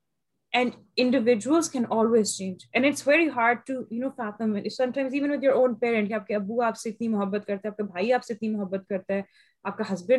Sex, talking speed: female, 220 wpm